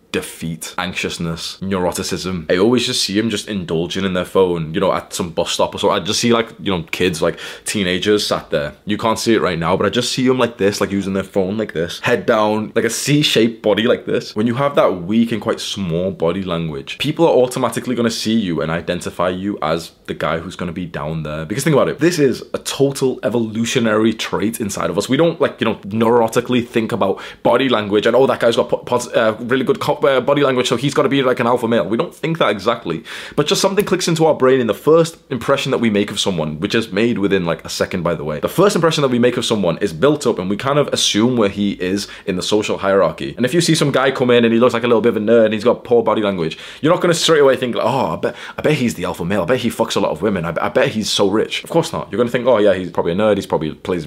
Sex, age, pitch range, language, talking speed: male, 20-39, 100-130 Hz, English, 280 wpm